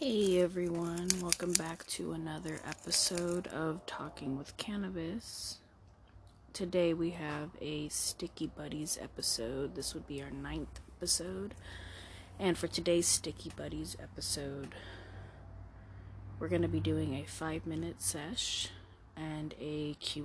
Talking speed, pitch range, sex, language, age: 120 wpm, 95-165 Hz, female, English, 30-49